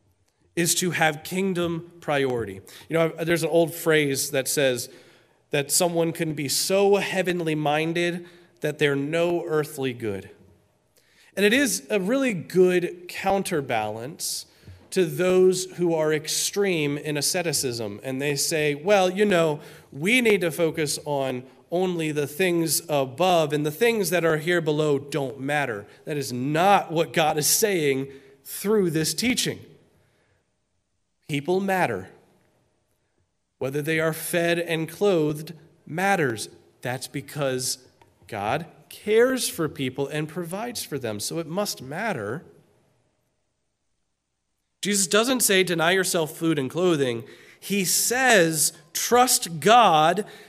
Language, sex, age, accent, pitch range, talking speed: English, male, 30-49, American, 140-185 Hz, 125 wpm